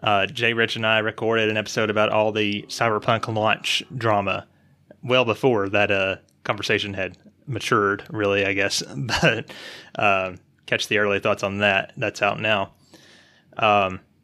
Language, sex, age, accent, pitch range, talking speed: English, male, 20-39, American, 105-125 Hz, 150 wpm